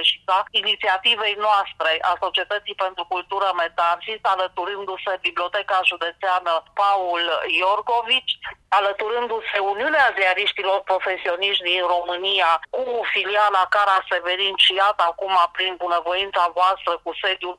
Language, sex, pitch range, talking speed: English, female, 175-205 Hz, 110 wpm